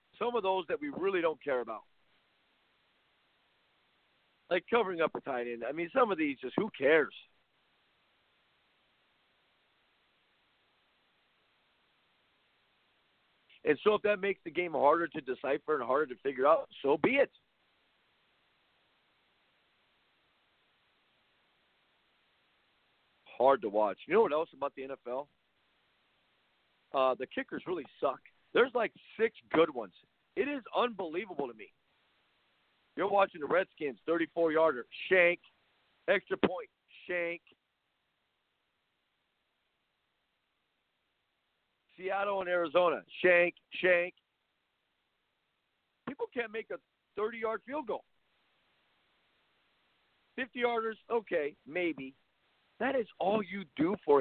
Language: English